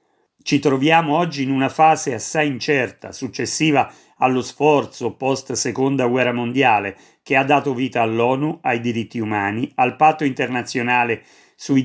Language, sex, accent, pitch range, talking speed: Italian, male, native, 120-150 Hz, 130 wpm